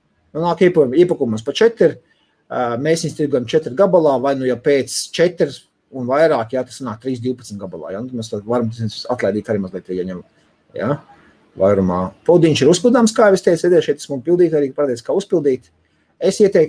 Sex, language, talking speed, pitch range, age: male, English, 170 wpm, 125-180 Hz, 30-49